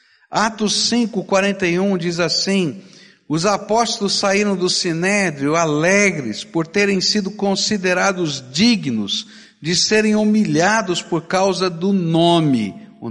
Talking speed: 105 wpm